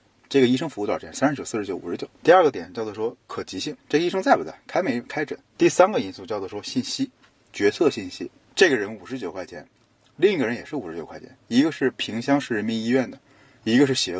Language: Chinese